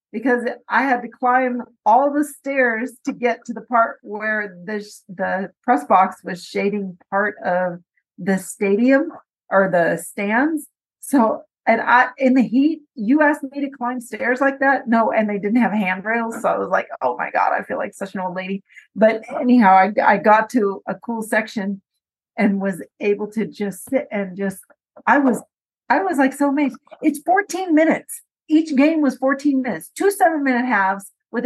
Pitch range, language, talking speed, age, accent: 210-280 Hz, English, 185 wpm, 40-59, American